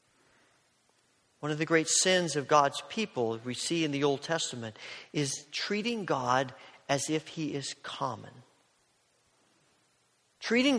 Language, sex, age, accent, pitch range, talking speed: English, male, 40-59, American, 140-185 Hz, 130 wpm